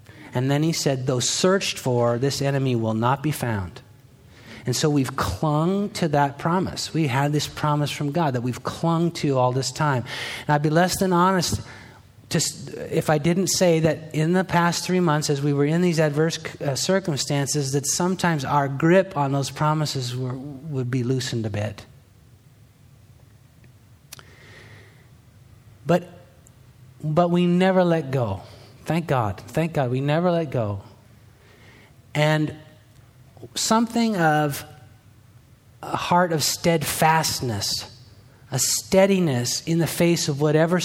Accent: American